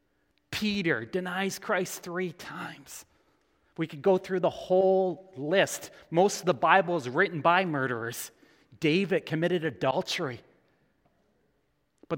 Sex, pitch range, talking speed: male, 125-175 Hz, 120 wpm